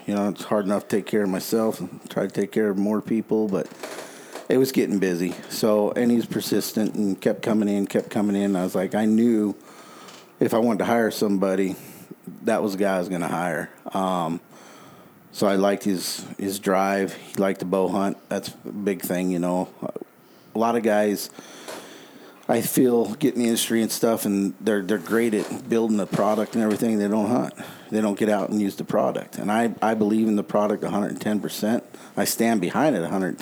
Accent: American